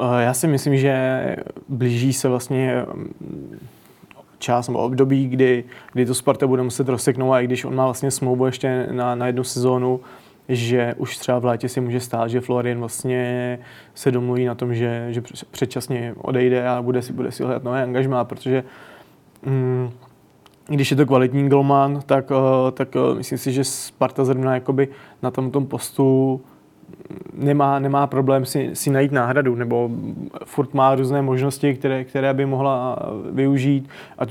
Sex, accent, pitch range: male, native, 125-135 Hz